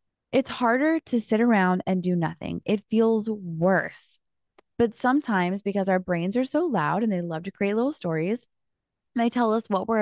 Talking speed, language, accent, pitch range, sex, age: 185 wpm, English, American, 180-230 Hz, female, 20-39